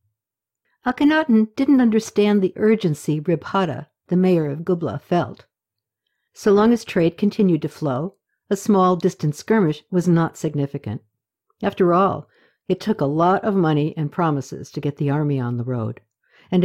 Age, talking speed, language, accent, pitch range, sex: 60-79, 155 wpm, English, American, 145-205 Hz, female